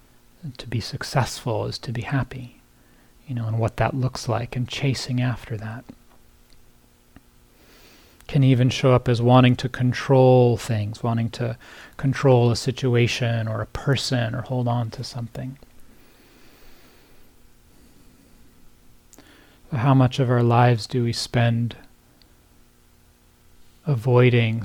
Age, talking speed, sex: 30-49, 120 wpm, male